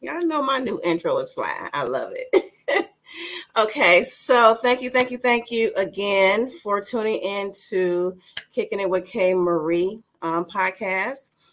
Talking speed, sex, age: 155 wpm, female, 30-49